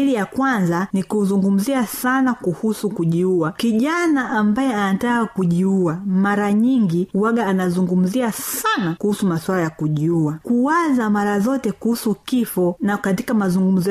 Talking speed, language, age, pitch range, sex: 120 wpm, Swahili, 30-49, 185-235 Hz, female